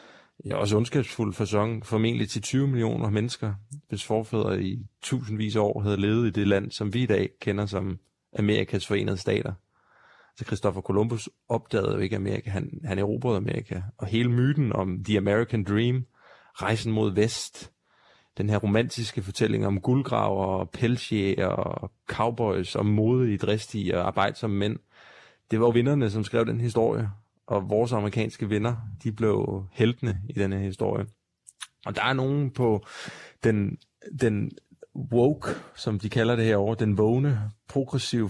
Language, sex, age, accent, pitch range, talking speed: Danish, male, 30-49, native, 100-120 Hz, 160 wpm